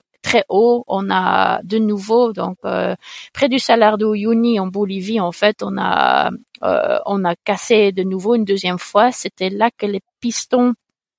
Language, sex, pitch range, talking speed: French, female, 205-255 Hz, 170 wpm